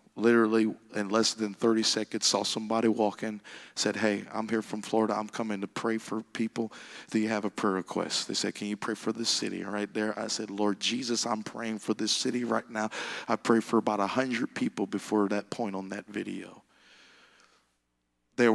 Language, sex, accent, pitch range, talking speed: English, male, American, 105-115 Hz, 195 wpm